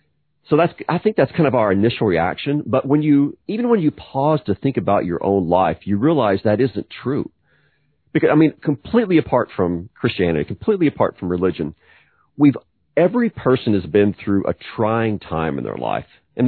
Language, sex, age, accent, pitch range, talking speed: English, male, 40-59, American, 100-145 Hz, 190 wpm